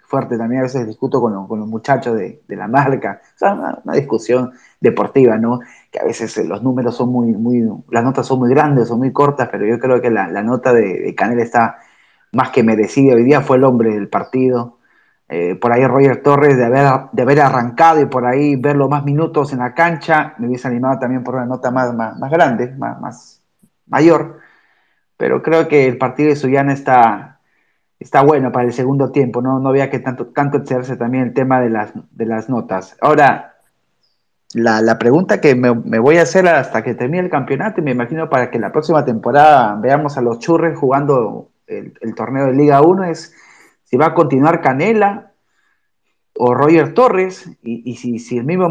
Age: 20-39